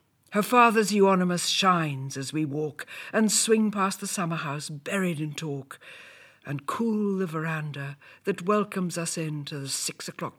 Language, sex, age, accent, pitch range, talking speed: English, female, 60-79, British, 145-190 Hz, 160 wpm